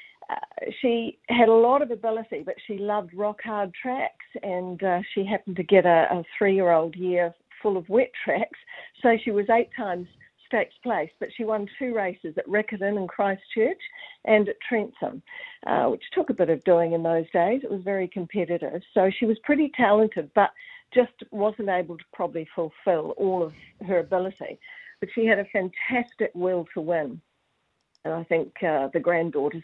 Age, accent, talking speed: 50-69, Australian, 185 wpm